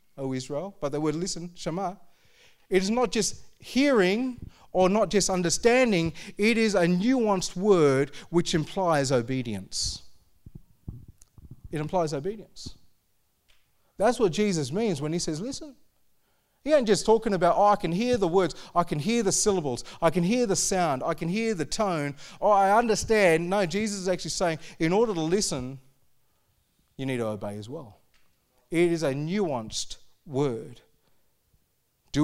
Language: English